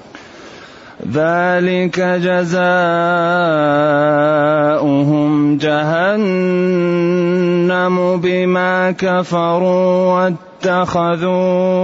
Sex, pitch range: male, 175-185 Hz